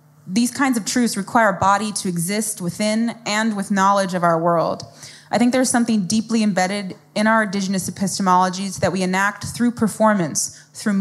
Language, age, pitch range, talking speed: English, 20-39, 180-215 Hz, 175 wpm